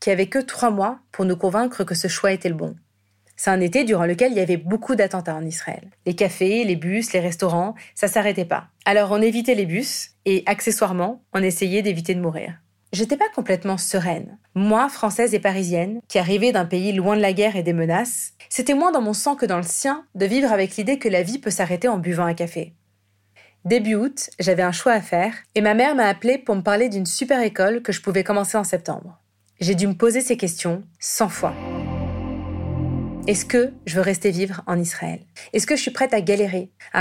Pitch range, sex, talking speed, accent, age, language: 180-220 Hz, female, 220 wpm, French, 30-49, French